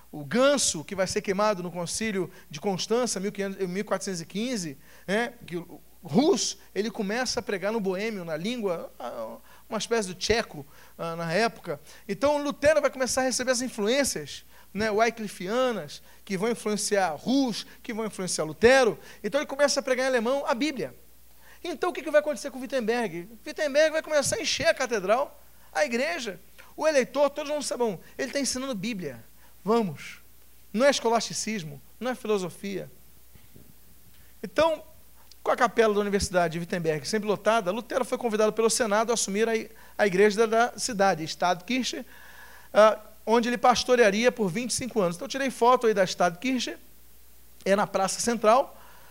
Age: 40-59